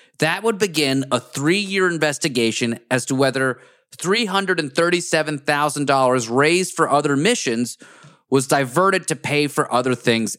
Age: 30-49